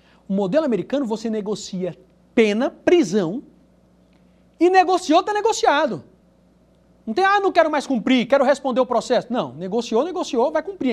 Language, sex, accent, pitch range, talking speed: Portuguese, male, Brazilian, 200-280 Hz, 150 wpm